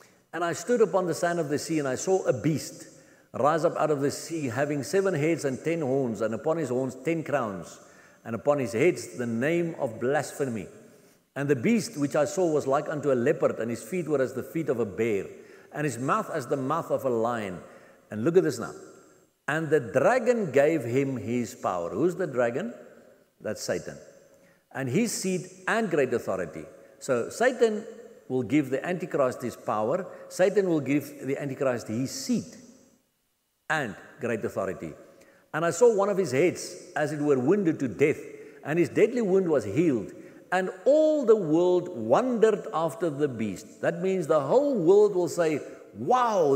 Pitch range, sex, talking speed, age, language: 130-200 Hz, male, 190 wpm, 60-79, English